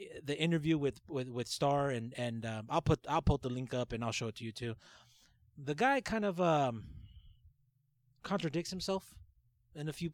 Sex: male